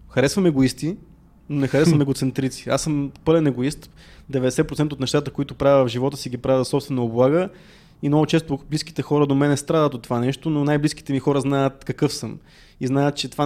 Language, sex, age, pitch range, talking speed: Bulgarian, male, 20-39, 125-145 Hz, 195 wpm